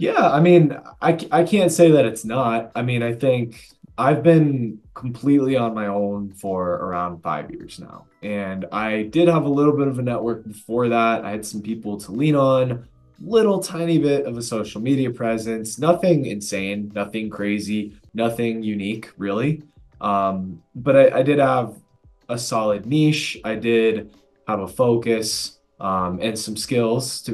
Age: 20-39